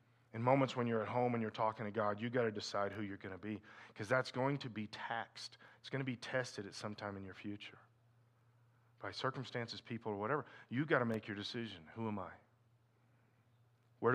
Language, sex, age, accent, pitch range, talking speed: English, male, 40-59, American, 110-130 Hz, 220 wpm